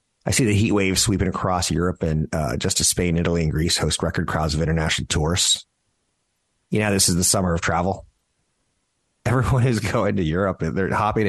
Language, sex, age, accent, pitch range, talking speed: English, male, 30-49, American, 85-105 Hz, 200 wpm